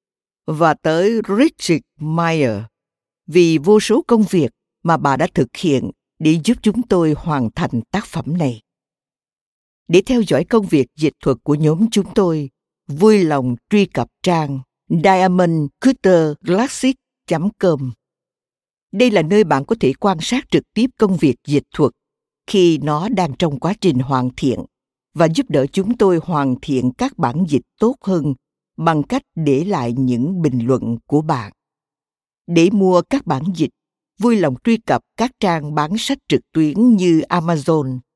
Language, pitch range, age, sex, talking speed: Vietnamese, 145-195 Hz, 60-79, female, 155 wpm